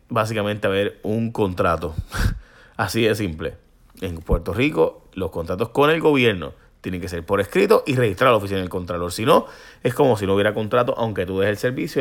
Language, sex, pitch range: Spanish, male, 95-130 Hz